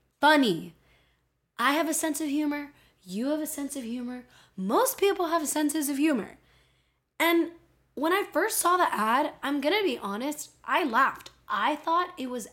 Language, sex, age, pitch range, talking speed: English, female, 10-29, 210-295 Hz, 175 wpm